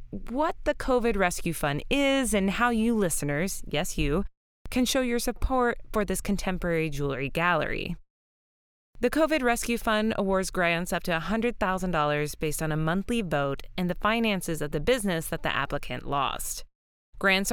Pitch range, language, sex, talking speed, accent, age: 155-235 Hz, English, female, 160 wpm, American, 20-39